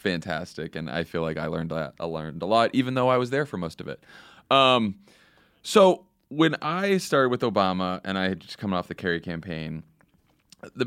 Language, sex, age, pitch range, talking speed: English, male, 30-49, 90-110 Hz, 205 wpm